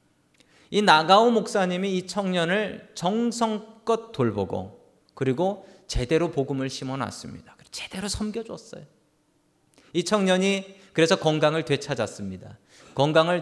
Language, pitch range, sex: Korean, 130-195 Hz, male